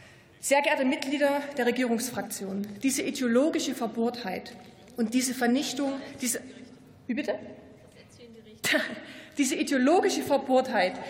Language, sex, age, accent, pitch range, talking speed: German, female, 20-39, German, 240-305 Hz, 90 wpm